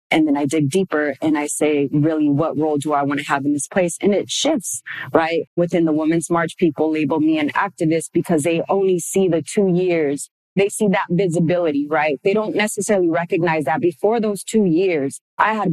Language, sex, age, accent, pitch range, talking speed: English, female, 30-49, American, 155-190 Hz, 210 wpm